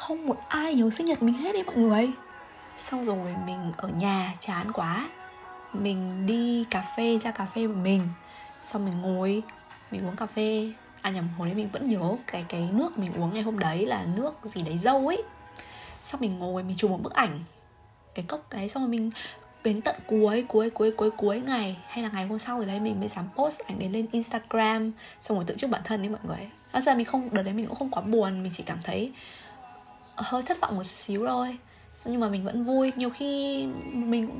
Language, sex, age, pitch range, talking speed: Vietnamese, female, 20-39, 190-245 Hz, 230 wpm